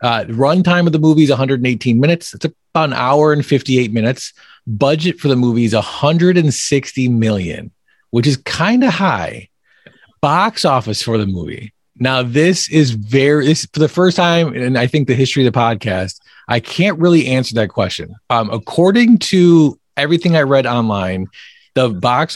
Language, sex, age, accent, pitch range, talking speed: English, male, 30-49, American, 115-155 Hz, 175 wpm